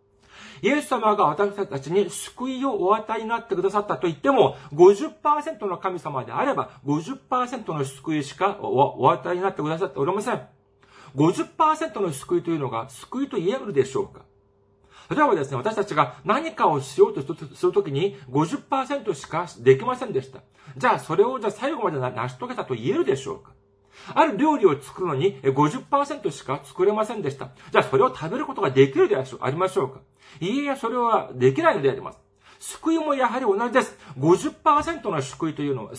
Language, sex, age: Japanese, male, 40-59